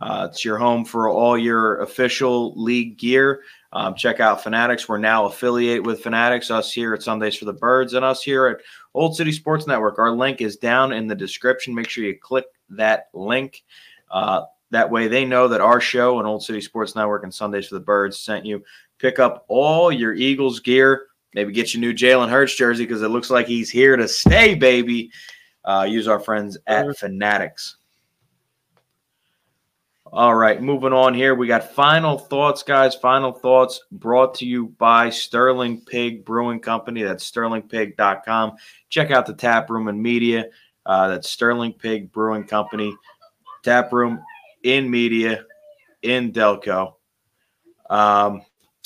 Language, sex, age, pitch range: English, male, 20-39, 110-130 Hz